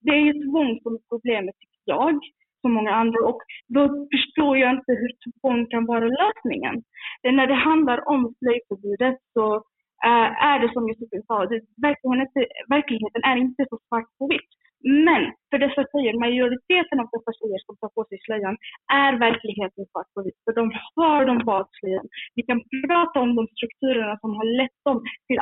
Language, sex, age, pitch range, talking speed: Swedish, female, 20-39, 225-285 Hz, 170 wpm